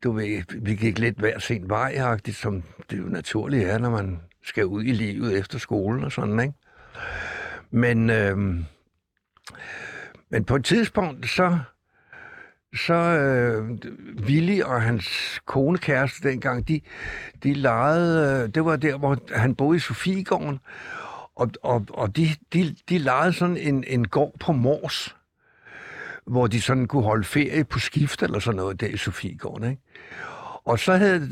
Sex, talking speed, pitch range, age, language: male, 155 wpm, 115-165 Hz, 60-79, Danish